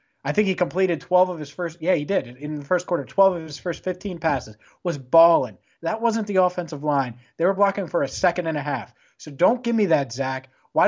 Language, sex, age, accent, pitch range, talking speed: English, male, 30-49, American, 145-185 Hz, 250 wpm